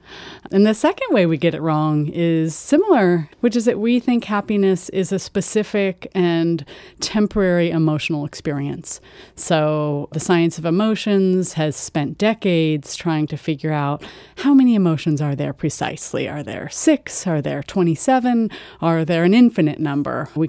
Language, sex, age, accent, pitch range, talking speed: English, female, 30-49, American, 155-200 Hz, 155 wpm